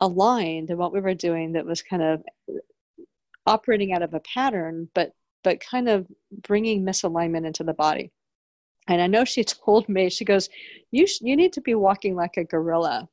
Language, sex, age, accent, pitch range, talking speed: English, female, 40-59, American, 165-215 Hz, 190 wpm